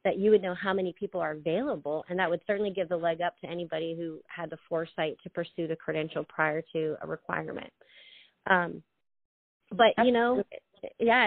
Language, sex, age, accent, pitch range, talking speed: English, female, 30-49, American, 170-200 Hz, 190 wpm